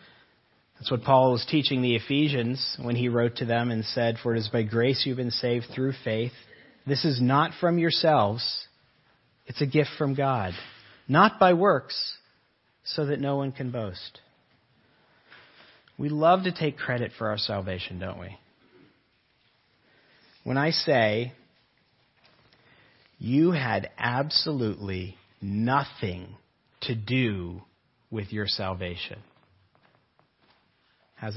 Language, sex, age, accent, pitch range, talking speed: English, male, 40-59, American, 110-145 Hz, 125 wpm